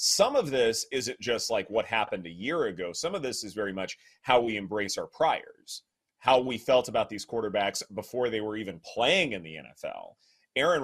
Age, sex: 30-49, male